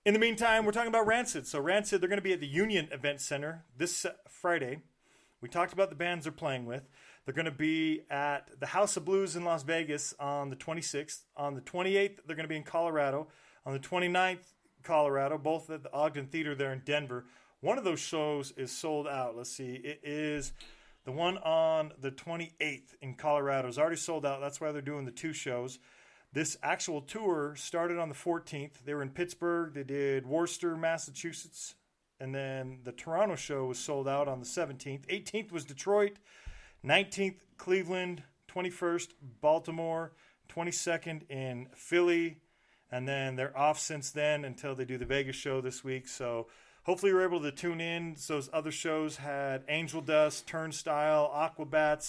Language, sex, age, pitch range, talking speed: English, male, 40-59, 140-170 Hz, 180 wpm